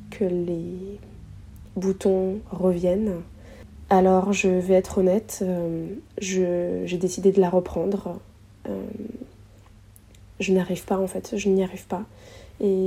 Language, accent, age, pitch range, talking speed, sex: French, French, 20-39, 180-200 Hz, 120 wpm, female